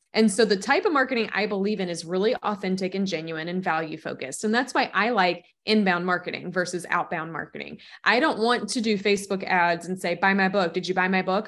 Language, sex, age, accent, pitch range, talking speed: English, female, 20-39, American, 185-240 Hz, 230 wpm